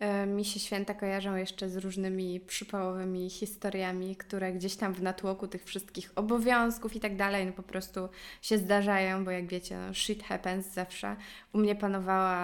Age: 20-39